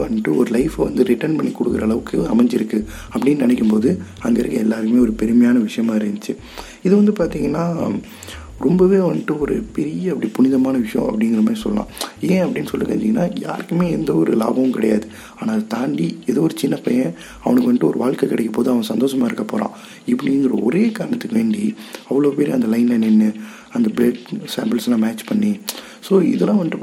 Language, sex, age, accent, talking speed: Tamil, male, 30-49, native, 170 wpm